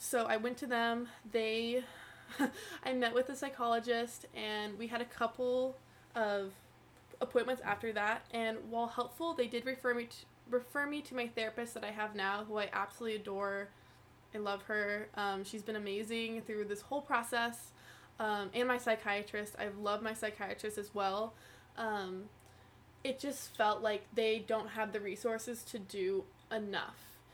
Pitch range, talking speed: 205-240 Hz, 165 wpm